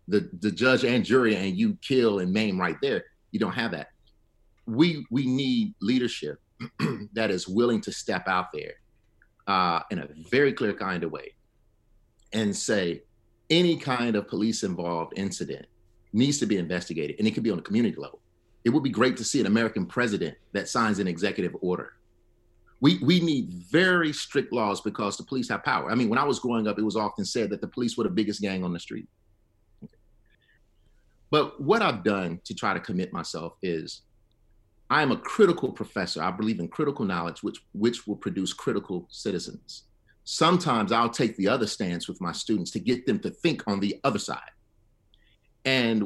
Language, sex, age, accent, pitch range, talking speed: English, male, 40-59, American, 100-130 Hz, 190 wpm